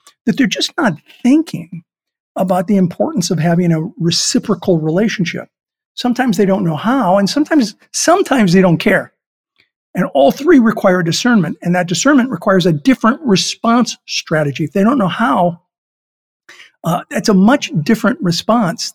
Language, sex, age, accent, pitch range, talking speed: English, male, 50-69, American, 165-215 Hz, 150 wpm